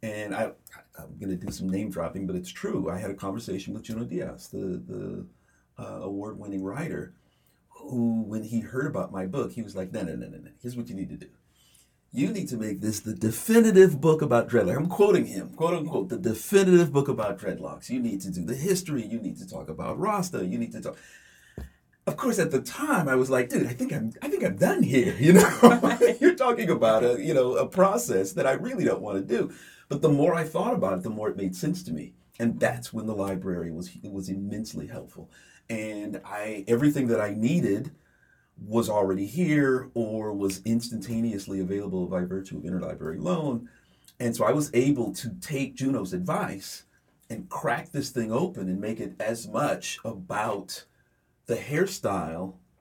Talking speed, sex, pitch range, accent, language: 205 wpm, male, 95-135 Hz, American, English